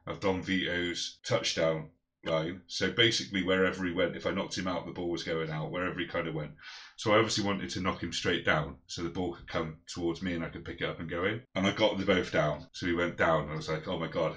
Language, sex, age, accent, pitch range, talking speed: English, male, 30-49, British, 85-110 Hz, 285 wpm